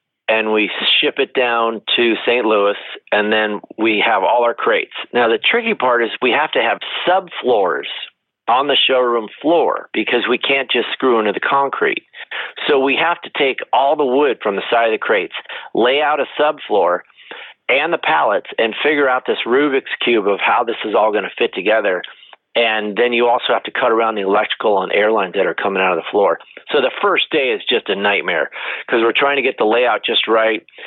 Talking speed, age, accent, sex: 210 wpm, 40-59, American, male